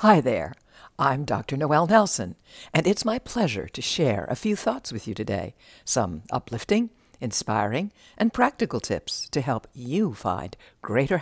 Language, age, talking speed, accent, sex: English, 60-79, 155 wpm, American, female